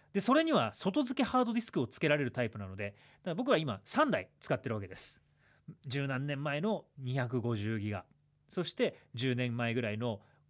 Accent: native